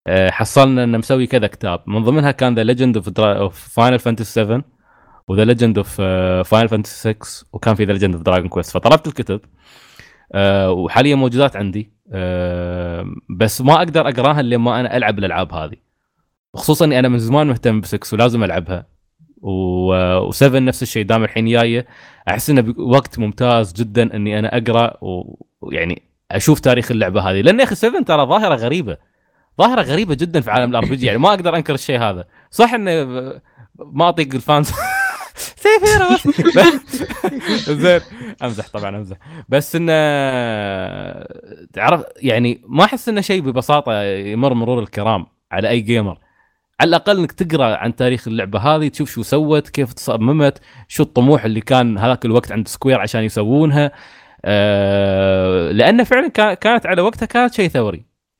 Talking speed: 150 wpm